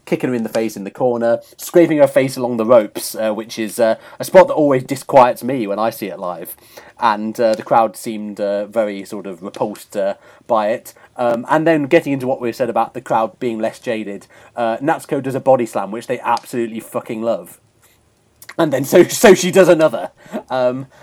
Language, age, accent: English, 30-49, British